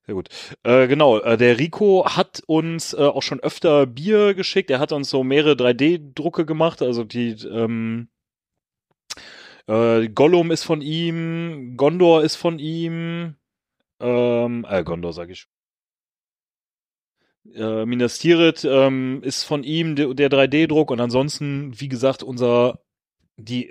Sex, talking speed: male, 140 wpm